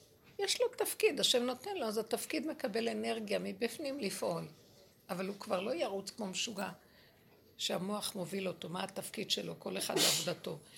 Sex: female